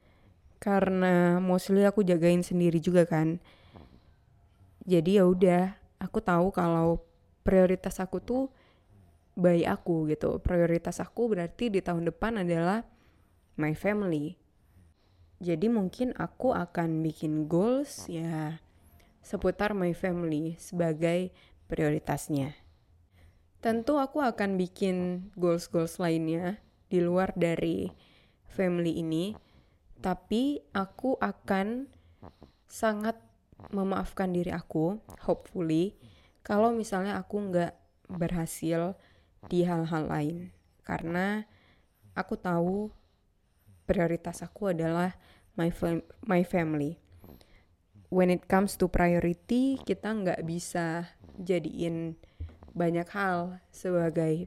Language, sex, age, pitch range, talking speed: Indonesian, female, 20-39, 150-190 Hz, 95 wpm